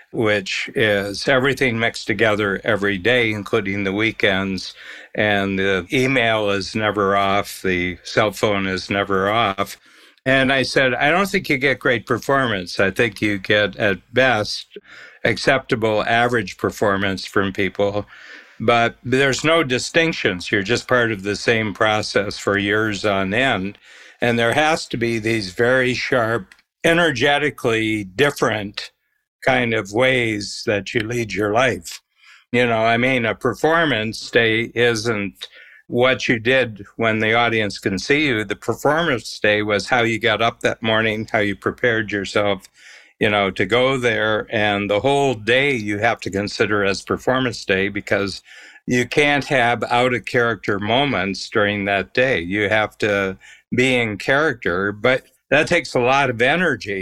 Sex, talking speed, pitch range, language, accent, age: male, 155 wpm, 100-125 Hz, English, American, 60-79